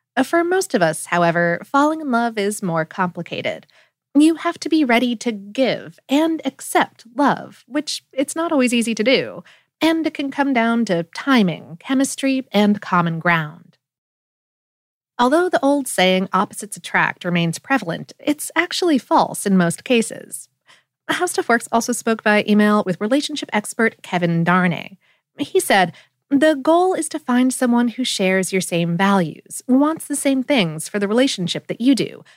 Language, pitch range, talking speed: English, 180-285 Hz, 160 wpm